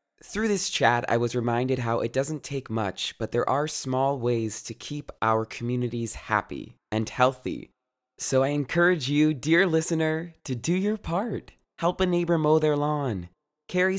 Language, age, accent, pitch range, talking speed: English, 20-39, American, 110-165 Hz, 170 wpm